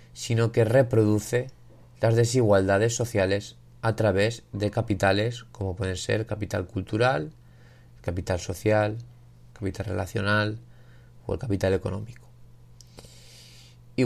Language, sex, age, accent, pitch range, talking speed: Spanish, male, 20-39, Spanish, 95-120 Hz, 100 wpm